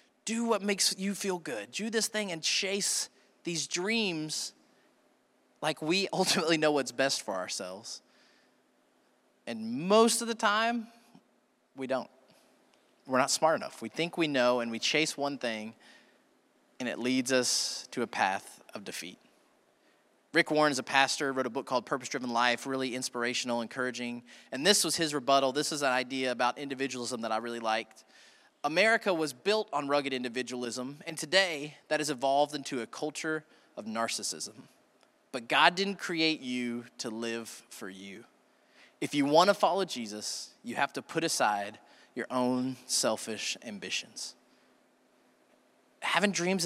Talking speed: 155 wpm